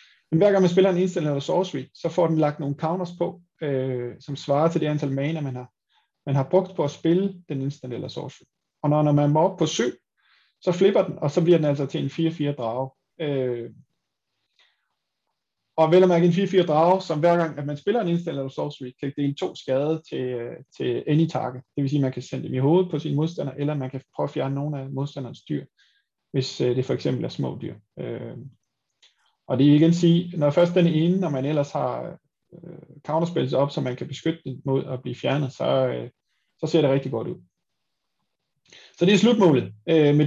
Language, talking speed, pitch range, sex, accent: Danish, 220 wpm, 135-175 Hz, male, native